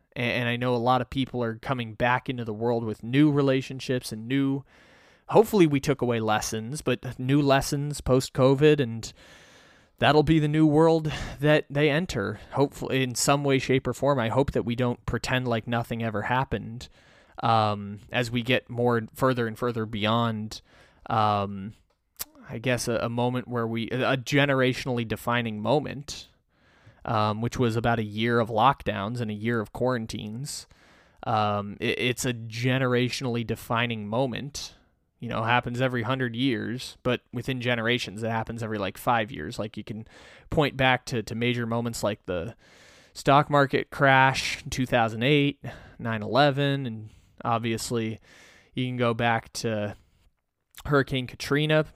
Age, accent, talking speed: 20-39, American, 155 wpm